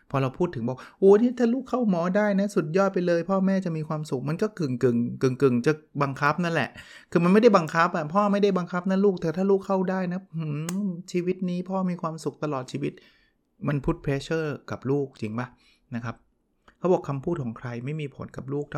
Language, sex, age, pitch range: Thai, male, 20-39, 125-170 Hz